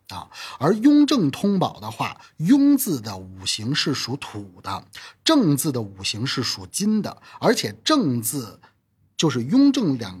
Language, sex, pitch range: Chinese, male, 105-160 Hz